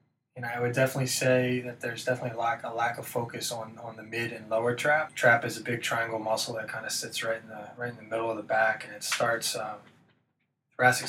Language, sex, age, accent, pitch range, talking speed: English, male, 20-39, American, 120-130 Hz, 250 wpm